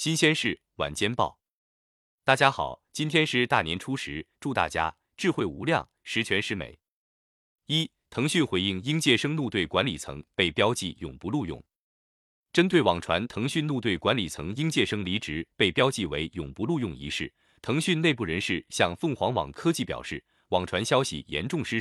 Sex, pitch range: male, 85-140 Hz